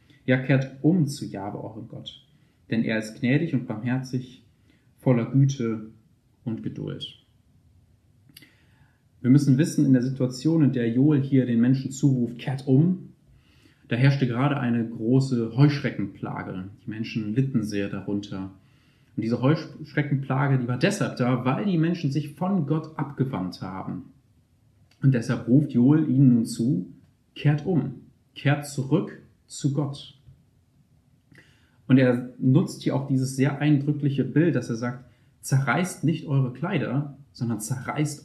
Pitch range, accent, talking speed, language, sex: 115-140 Hz, German, 140 wpm, German, male